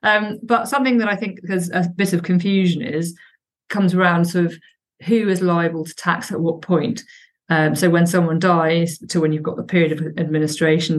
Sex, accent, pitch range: female, British, 160-185 Hz